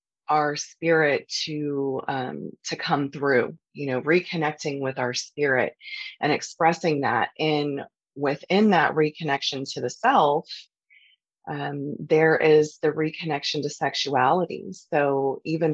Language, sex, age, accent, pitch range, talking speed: English, female, 30-49, American, 140-165 Hz, 120 wpm